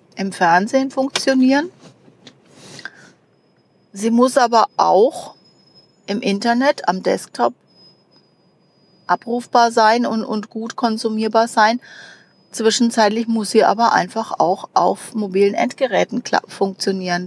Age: 30-49